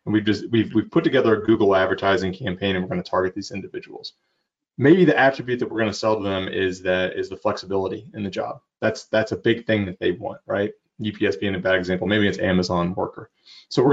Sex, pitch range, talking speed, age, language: male, 100-145 Hz, 235 wpm, 30-49, English